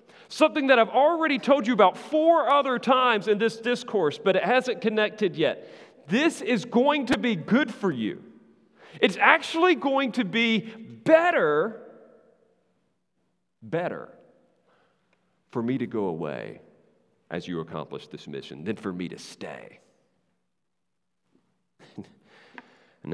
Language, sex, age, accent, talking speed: English, male, 40-59, American, 125 wpm